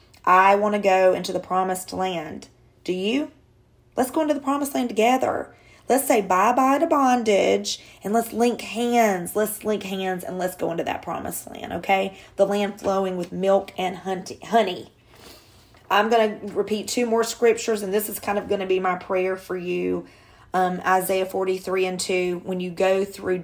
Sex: female